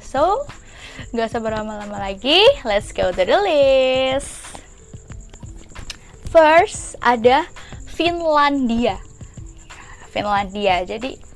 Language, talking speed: Indonesian, 80 wpm